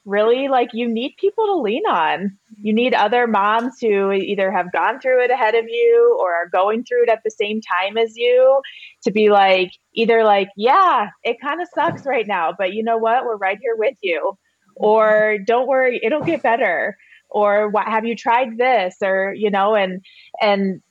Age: 20-39